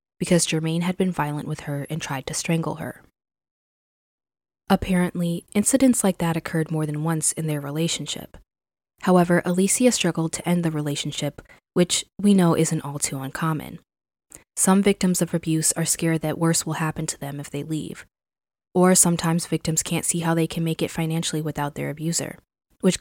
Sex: female